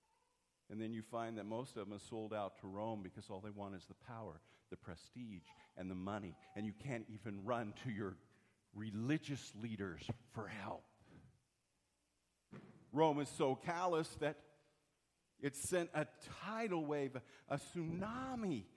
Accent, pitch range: American, 105-140 Hz